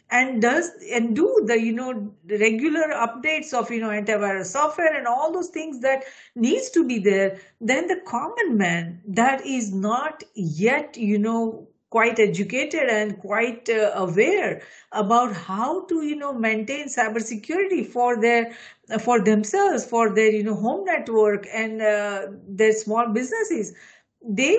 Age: 50-69